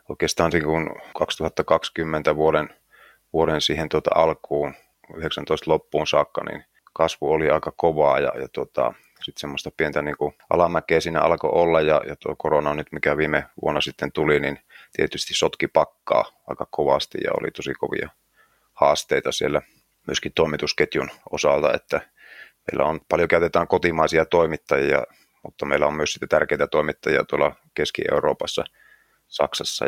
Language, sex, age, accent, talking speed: English, male, 30-49, Finnish, 135 wpm